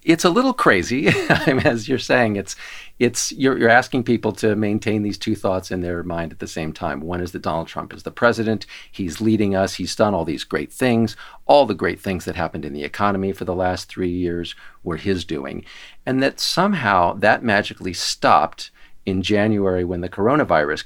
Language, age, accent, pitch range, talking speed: English, 50-69, American, 90-110 Hz, 200 wpm